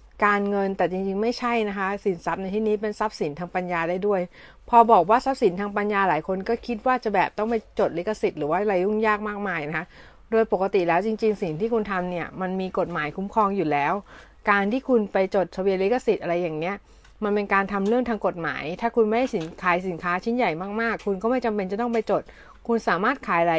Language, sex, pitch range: Thai, female, 175-225 Hz